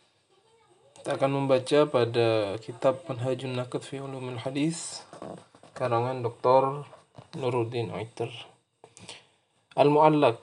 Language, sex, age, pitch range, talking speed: Indonesian, male, 20-39, 120-155 Hz, 80 wpm